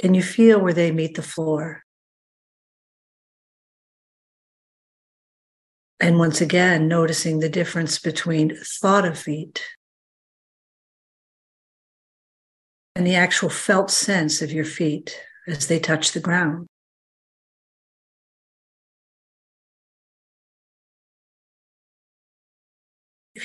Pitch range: 160-195 Hz